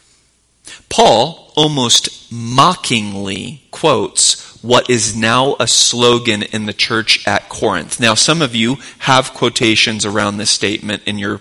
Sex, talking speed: male, 130 wpm